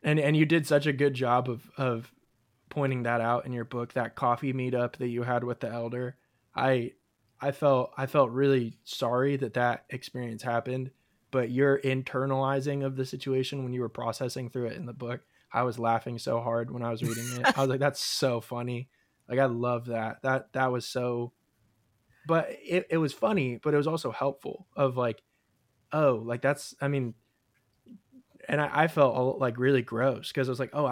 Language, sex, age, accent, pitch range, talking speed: English, male, 20-39, American, 120-135 Hz, 200 wpm